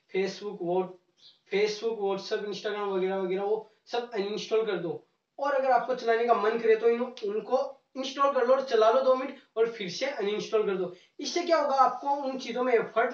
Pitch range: 195-250 Hz